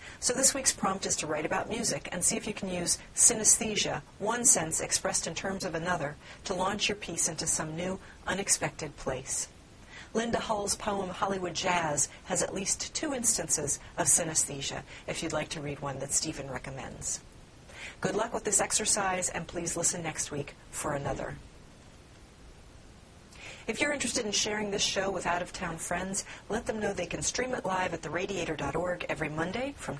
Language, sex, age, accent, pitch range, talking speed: English, female, 40-59, American, 155-205 Hz, 175 wpm